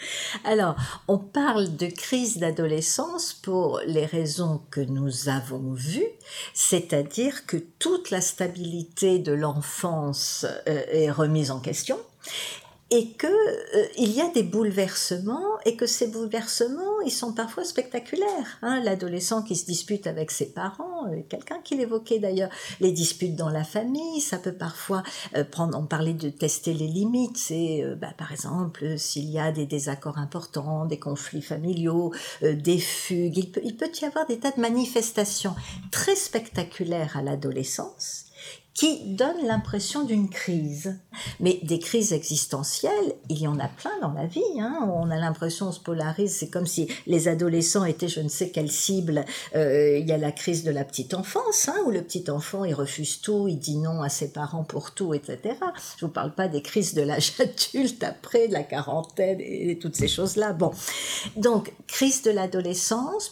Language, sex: French, female